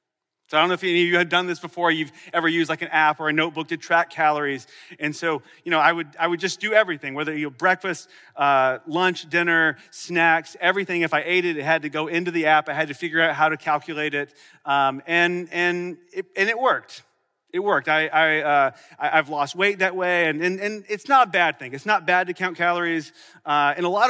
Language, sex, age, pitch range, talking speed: English, male, 30-49, 160-200 Hz, 245 wpm